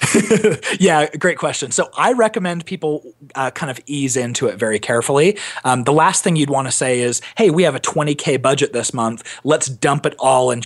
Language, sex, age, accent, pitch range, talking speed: English, male, 30-49, American, 120-145 Hz, 210 wpm